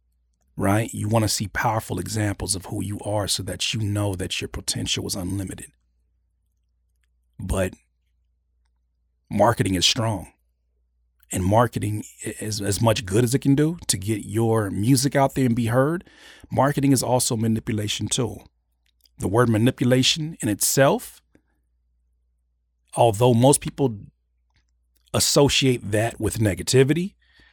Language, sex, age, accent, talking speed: English, male, 40-59, American, 135 wpm